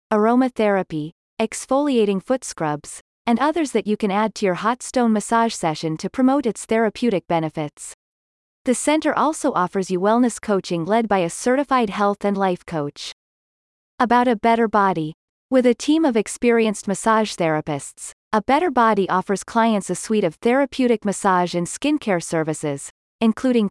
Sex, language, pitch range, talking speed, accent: female, English, 180-245 Hz, 155 wpm, American